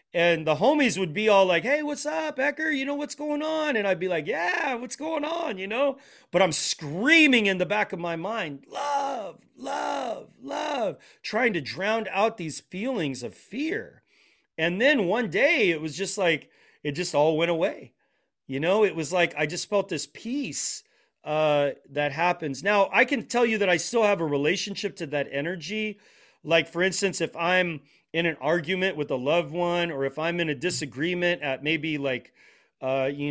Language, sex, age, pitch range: English, male, 30-49, 150-210 Hz